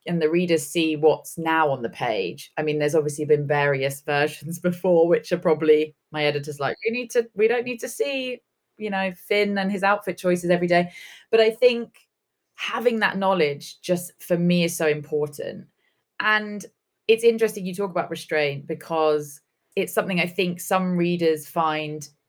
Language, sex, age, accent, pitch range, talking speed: English, female, 20-39, British, 155-205 Hz, 180 wpm